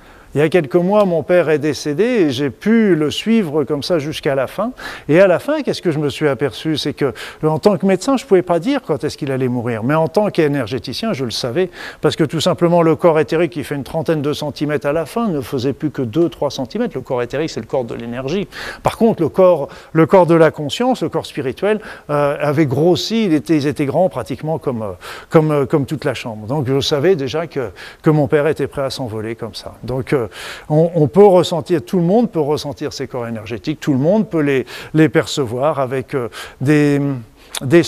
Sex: male